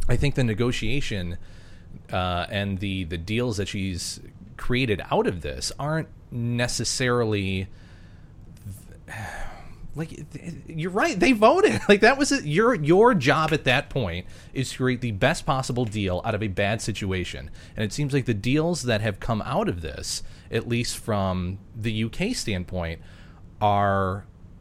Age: 30-49